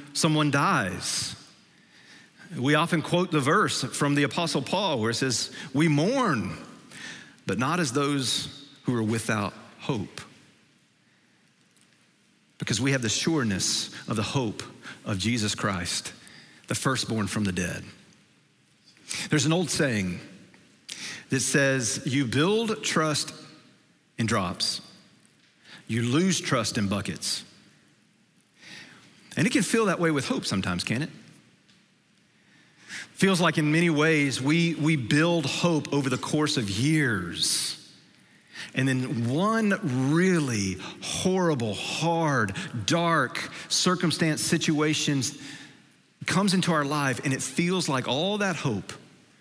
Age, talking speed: 40-59, 125 wpm